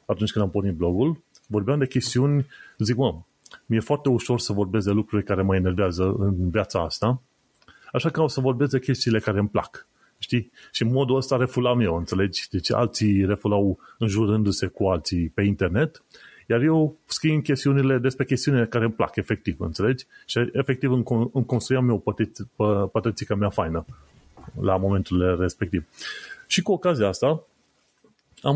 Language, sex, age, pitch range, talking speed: Romanian, male, 30-49, 100-135 Hz, 160 wpm